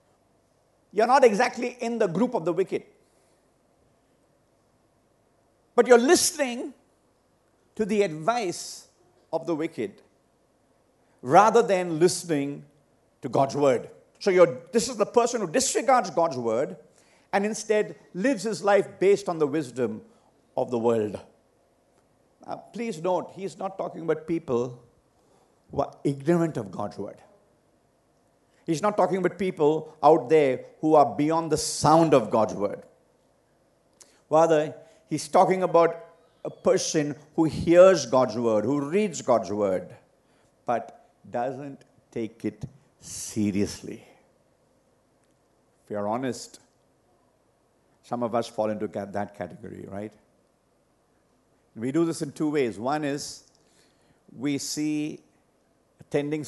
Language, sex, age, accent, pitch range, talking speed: English, male, 50-69, Indian, 135-195 Hz, 120 wpm